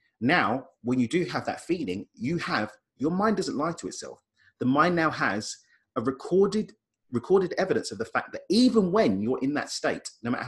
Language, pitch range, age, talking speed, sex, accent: English, 110-175 Hz, 30-49, 200 wpm, male, British